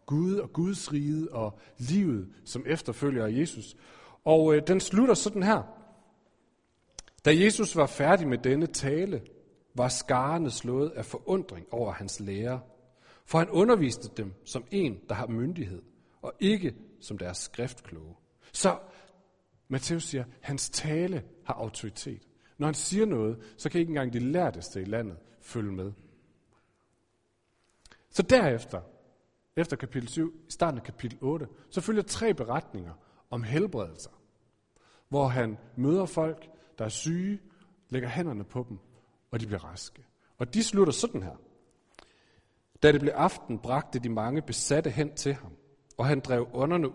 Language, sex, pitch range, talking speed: Danish, male, 115-170 Hz, 150 wpm